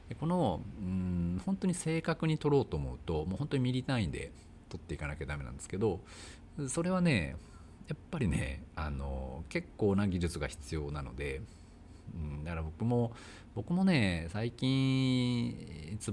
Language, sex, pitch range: Japanese, male, 75-110 Hz